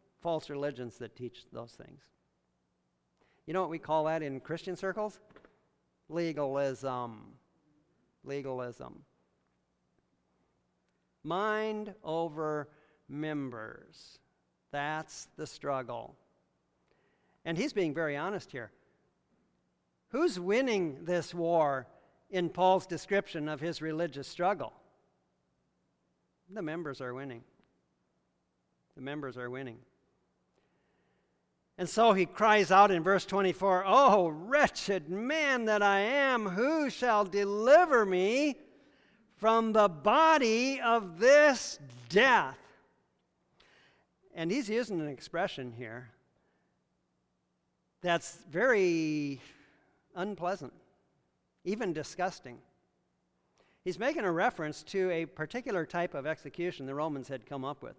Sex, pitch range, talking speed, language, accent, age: male, 135-195 Hz, 100 wpm, English, American, 50-69